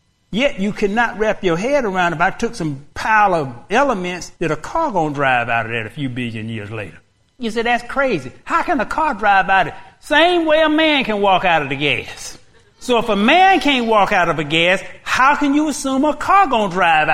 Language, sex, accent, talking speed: English, male, American, 235 wpm